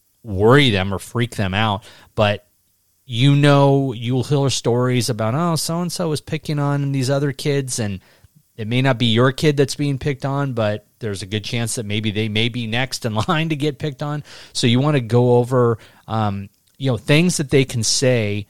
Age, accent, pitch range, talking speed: 30-49, American, 105-135 Hz, 210 wpm